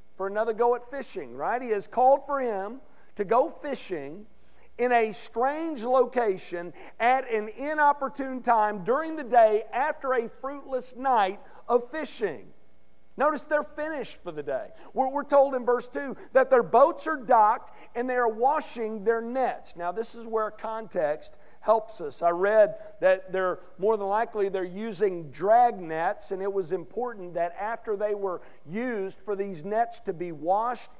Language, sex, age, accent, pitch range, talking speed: English, male, 50-69, American, 205-260 Hz, 165 wpm